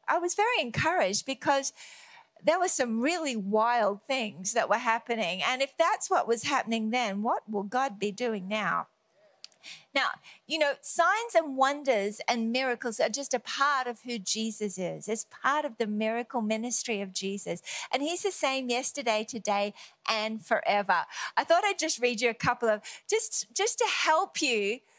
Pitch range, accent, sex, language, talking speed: 210-285 Hz, Australian, female, English, 175 wpm